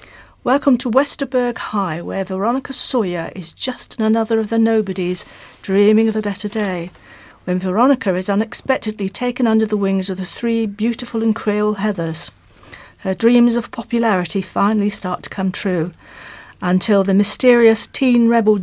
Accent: British